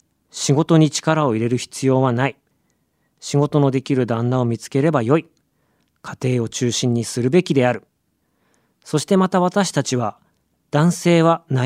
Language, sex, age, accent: Japanese, male, 40-59, native